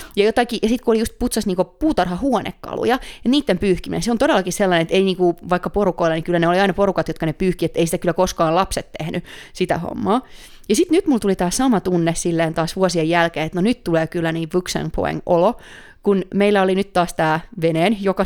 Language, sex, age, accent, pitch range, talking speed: Finnish, female, 30-49, native, 170-215 Hz, 220 wpm